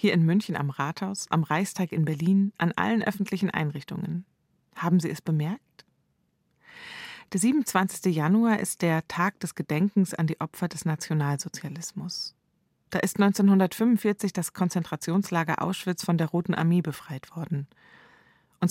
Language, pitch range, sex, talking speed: German, 165-195 Hz, female, 140 wpm